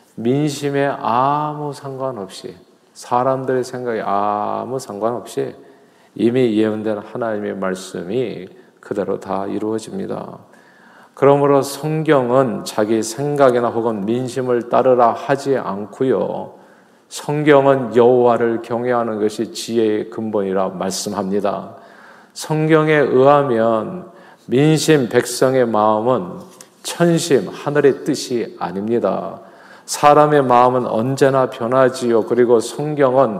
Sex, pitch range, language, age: male, 115-145 Hz, Korean, 40-59